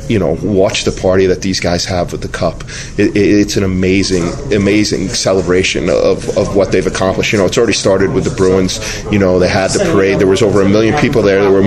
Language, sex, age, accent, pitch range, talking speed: English, male, 30-49, American, 95-105 Hz, 240 wpm